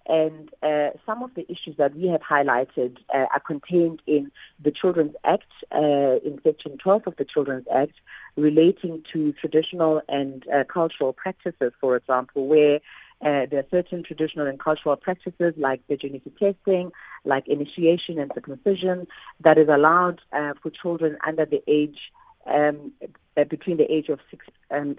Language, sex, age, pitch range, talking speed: English, female, 40-59, 145-175 Hz, 155 wpm